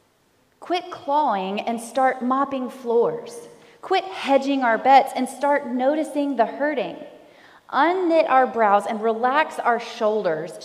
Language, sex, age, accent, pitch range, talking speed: English, female, 30-49, American, 205-270 Hz, 125 wpm